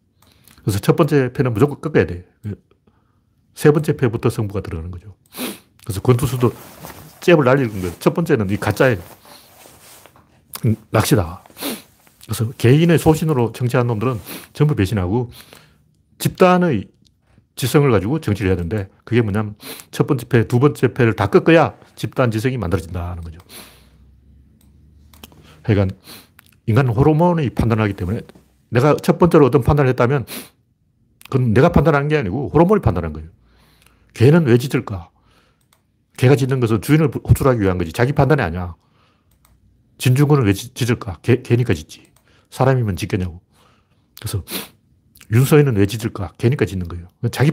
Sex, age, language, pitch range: male, 40-59, Korean, 100-130 Hz